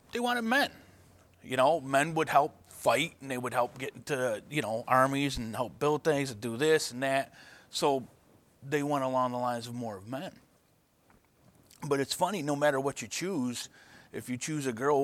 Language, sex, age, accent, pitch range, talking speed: English, male, 30-49, American, 120-150 Hz, 200 wpm